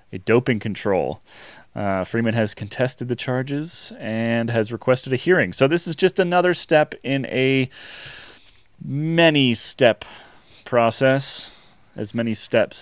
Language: English